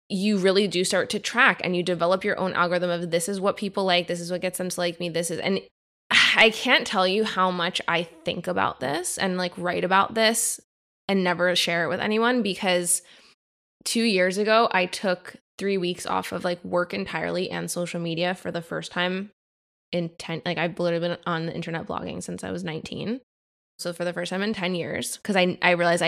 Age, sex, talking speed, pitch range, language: 20-39, female, 220 wpm, 170-195 Hz, English